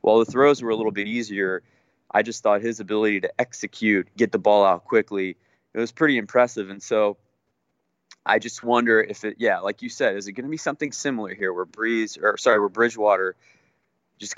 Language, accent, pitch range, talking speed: English, American, 100-120 Hz, 210 wpm